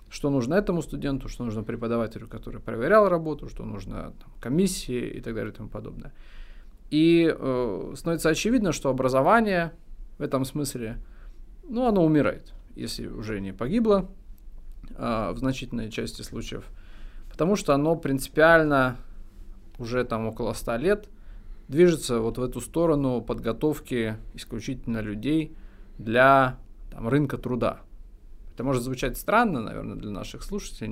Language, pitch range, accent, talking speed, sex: Russian, 110-150 Hz, native, 125 wpm, male